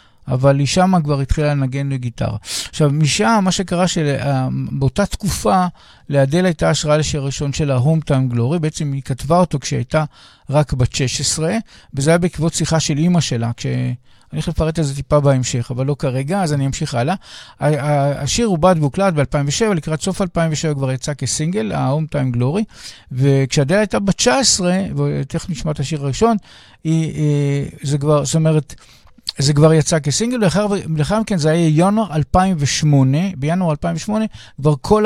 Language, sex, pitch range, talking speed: English, male, 140-180 Hz, 160 wpm